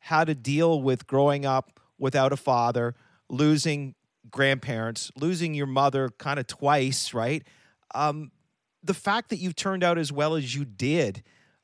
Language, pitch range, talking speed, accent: English, 135-165 Hz, 155 wpm, American